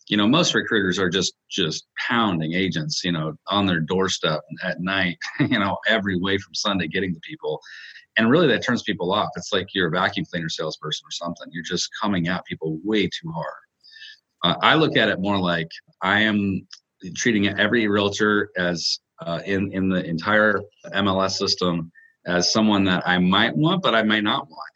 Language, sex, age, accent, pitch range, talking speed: English, male, 30-49, American, 90-105 Hz, 190 wpm